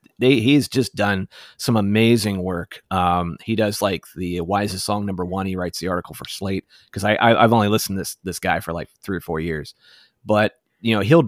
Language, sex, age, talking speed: English, male, 30-49, 230 wpm